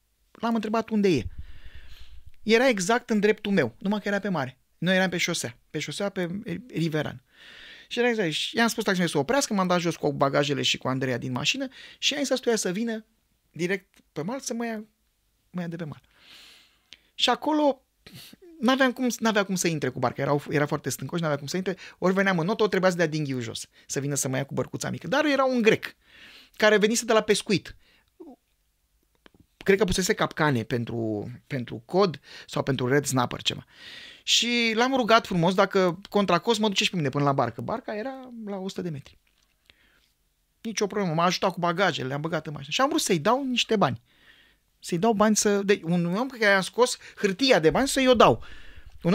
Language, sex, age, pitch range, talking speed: Romanian, male, 20-39, 150-230 Hz, 205 wpm